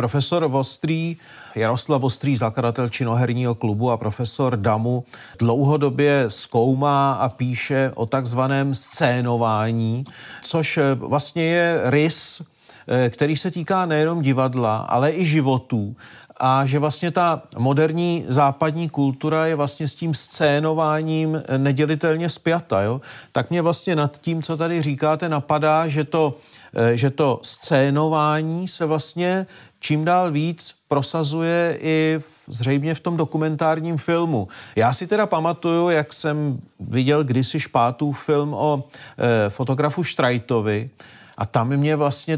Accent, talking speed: native, 125 wpm